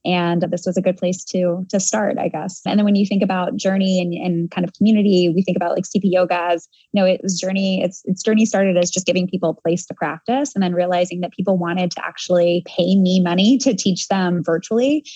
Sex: female